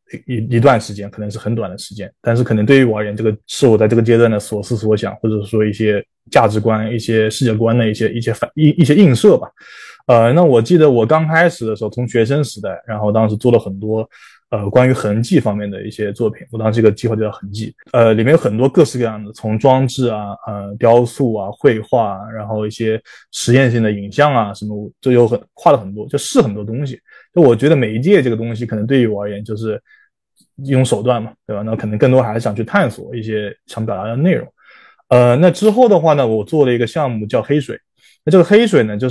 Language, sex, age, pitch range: Chinese, male, 20-39, 105-125 Hz